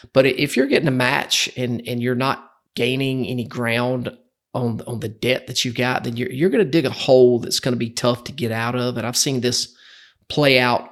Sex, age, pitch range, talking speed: male, 30-49, 115-130 Hz, 235 wpm